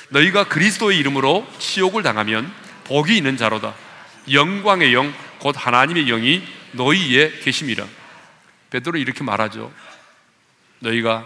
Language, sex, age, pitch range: Korean, male, 40-59, 115-150 Hz